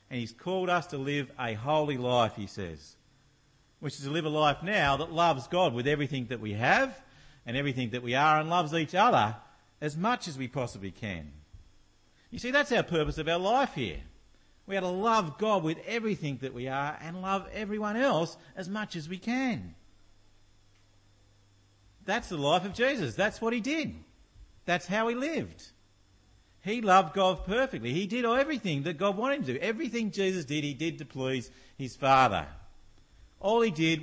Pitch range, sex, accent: 120-200 Hz, male, Australian